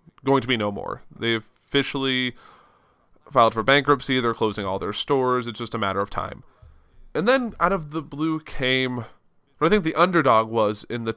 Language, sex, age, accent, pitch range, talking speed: English, male, 20-39, American, 110-135 Hz, 195 wpm